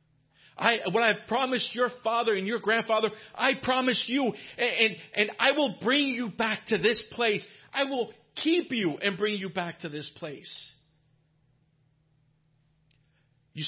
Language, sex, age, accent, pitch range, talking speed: English, male, 50-69, American, 145-185 Hz, 155 wpm